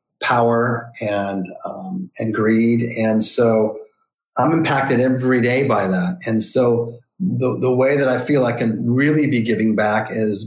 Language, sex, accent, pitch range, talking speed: English, male, American, 110-130 Hz, 160 wpm